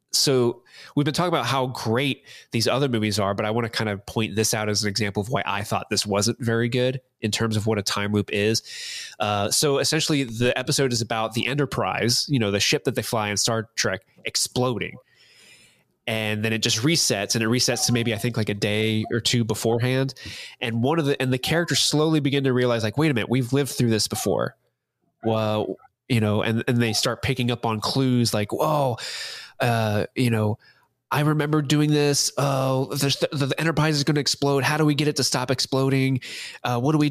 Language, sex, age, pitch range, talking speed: English, male, 20-39, 110-145 Hz, 225 wpm